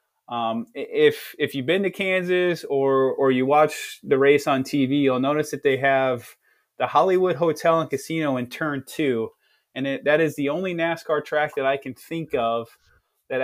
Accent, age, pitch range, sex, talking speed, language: American, 20-39, 125-150 Hz, male, 185 wpm, English